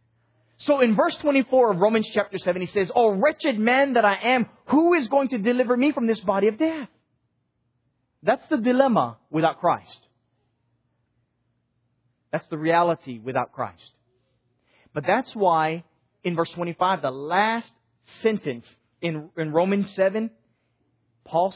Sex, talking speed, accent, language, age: male, 140 wpm, American, English, 30-49